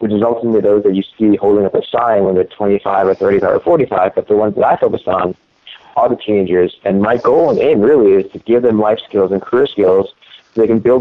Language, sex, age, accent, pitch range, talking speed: English, male, 30-49, American, 105-160 Hz, 255 wpm